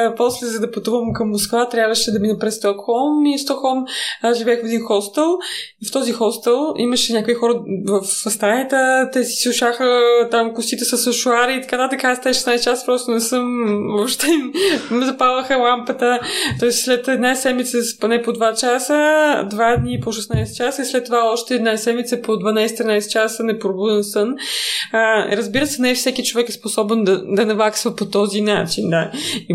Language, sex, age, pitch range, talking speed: Bulgarian, female, 20-39, 195-245 Hz, 180 wpm